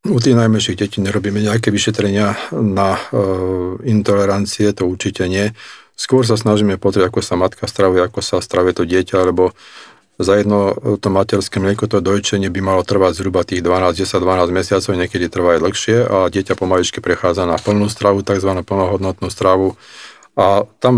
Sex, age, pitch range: male, 40-59, 90-105 Hz